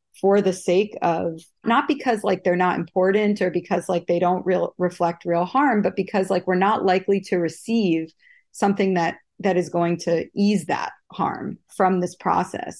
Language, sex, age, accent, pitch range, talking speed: English, female, 30-49, American, 170-195 Hz, 185 wpm